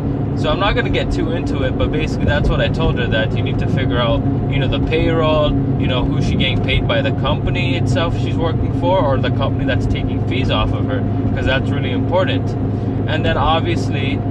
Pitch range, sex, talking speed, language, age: 115-130 Hz, male, 230 wpm, English, 20-39